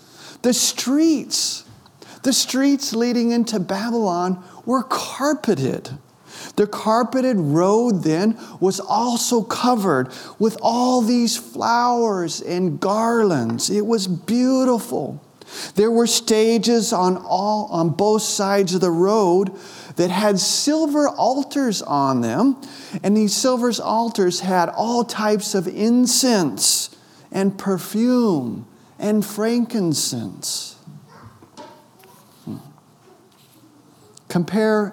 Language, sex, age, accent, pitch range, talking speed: English, male, 40-59, American, 175-230 Hz, 100 wpm